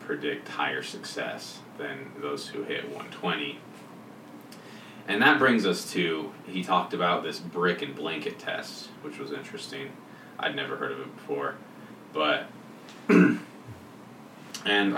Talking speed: 130 wpm